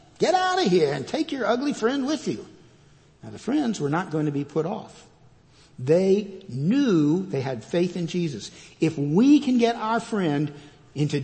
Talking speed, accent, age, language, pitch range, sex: 185 wpm, American, 60-79, English, 145-185 Hz, male